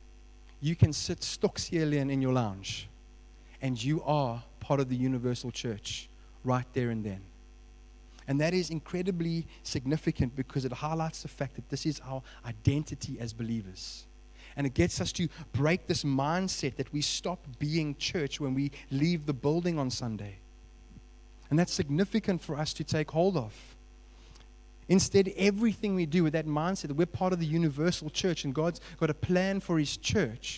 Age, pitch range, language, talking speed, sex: 30-49, 120-160 Hz, English, 175 wpm, male